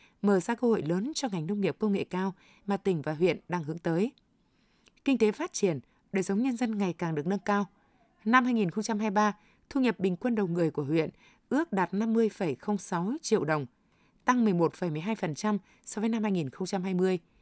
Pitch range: 185-225 Hz